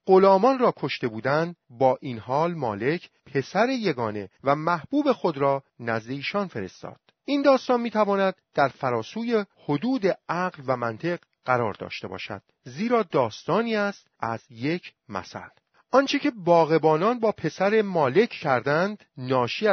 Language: Persian